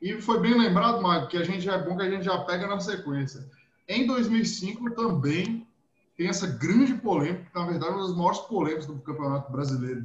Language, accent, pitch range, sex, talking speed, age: Portuguese, Brazilian, 150-210 Hz, male, 210 wpm, 20-39